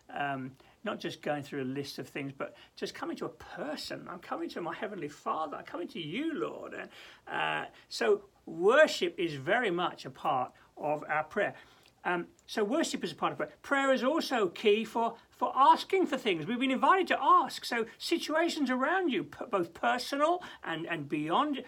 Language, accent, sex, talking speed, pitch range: English, British, male, 195 wpm, 200-320 Hz